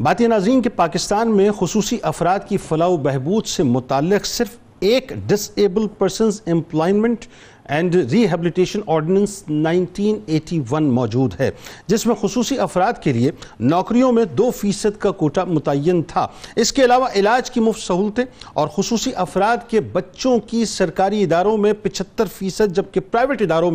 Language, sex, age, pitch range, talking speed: Urdu, male, 50-69, 180-230 Hz, 155 wpm